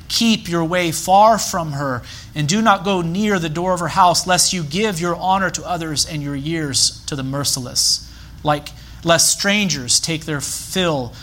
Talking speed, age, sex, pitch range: 185 wpm, 30-49, male, 135-170 Hz